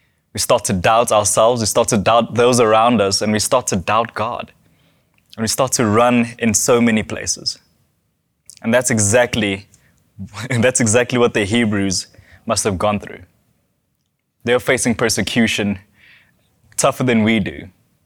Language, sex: English, male